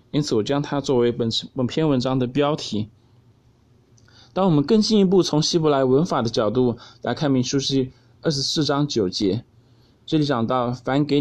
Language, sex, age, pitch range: Chinese, male, 20-39, 115-145 Hz